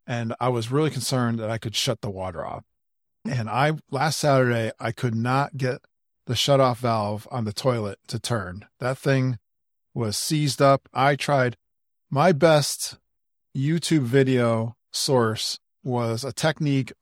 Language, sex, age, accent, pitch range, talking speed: English, male, 40-59, American, 110-140 Hz, 150 wpm